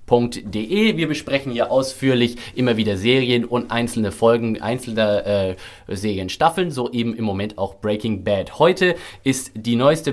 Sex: male